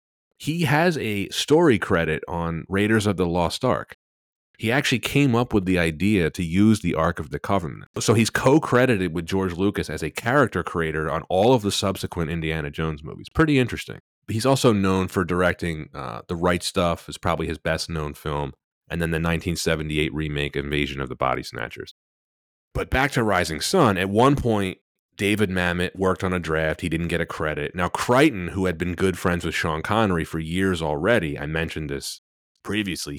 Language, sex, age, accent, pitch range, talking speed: English, male, 30-49, American, 75-100 Hz, 190 wpm